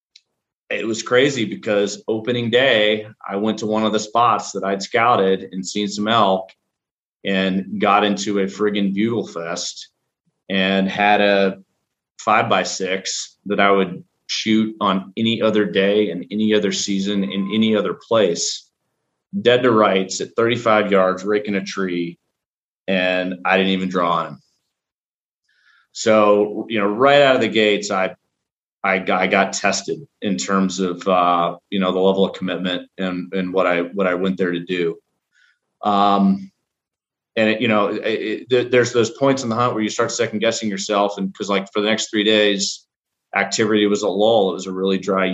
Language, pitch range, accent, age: English, 95-110 Hz, American, 30-49